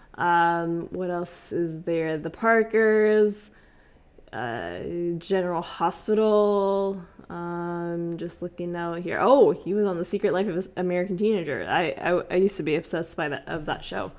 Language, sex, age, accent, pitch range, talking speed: English, female, 20-39, American, 170-215 Hz, 160 wpm